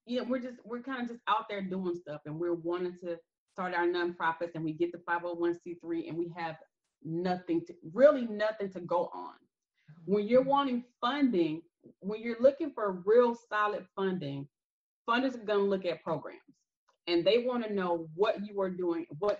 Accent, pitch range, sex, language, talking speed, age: American, 170-220 Hz, female, English, 205 wpm, 30-49